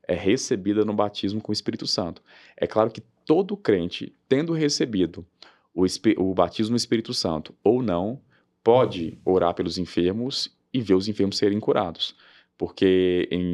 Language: Portuguese